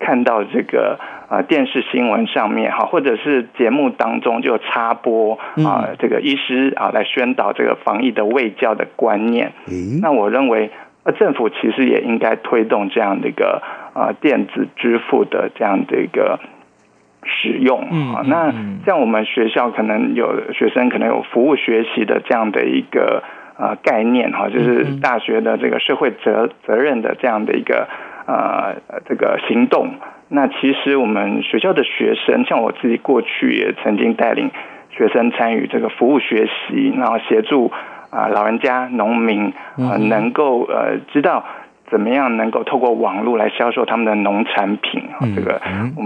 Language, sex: Chinese, male